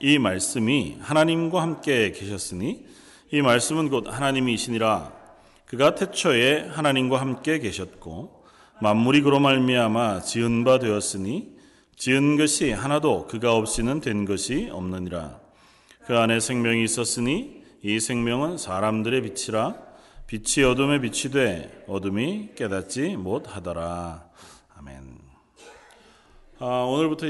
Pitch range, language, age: 95-130 Hz, Korean, 40-59